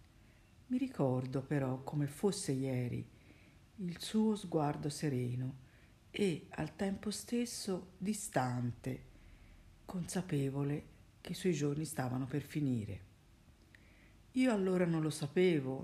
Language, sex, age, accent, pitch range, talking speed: Italian, female, 50-69, native, 125-185 Hz, 105 wpm